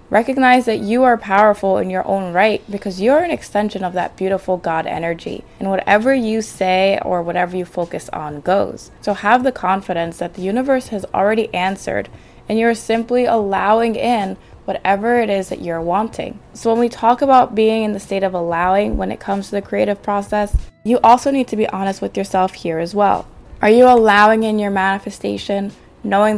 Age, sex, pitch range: 20-39, female, 185-215 Hz